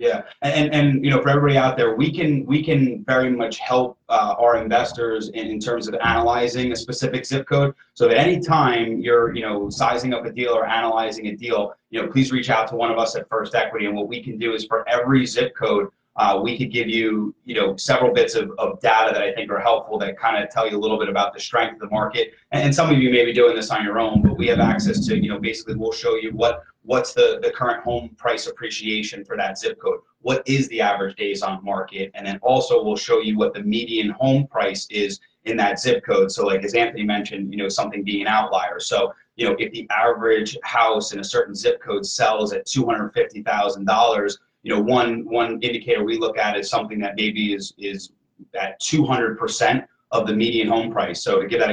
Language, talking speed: English, 235 wpm